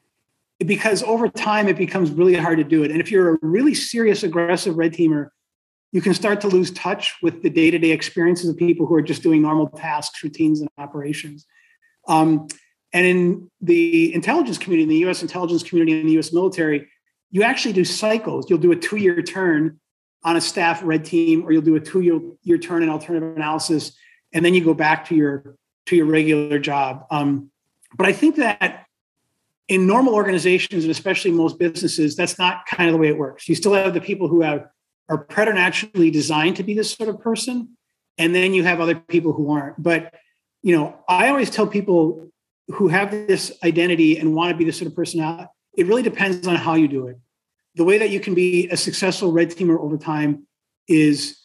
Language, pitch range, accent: English, 155-190 Hz, American